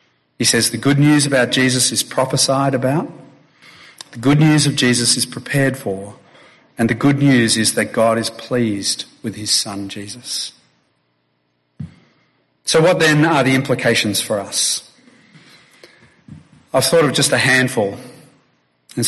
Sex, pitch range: male, 110-135 Hz